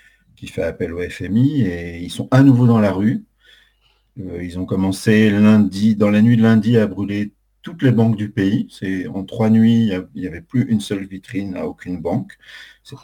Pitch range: 90-115 Hz